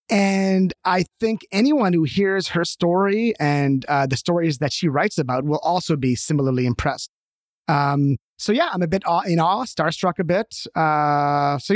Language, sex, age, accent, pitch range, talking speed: English, male, 30-49, American, 140-185 Hz, 180 wpm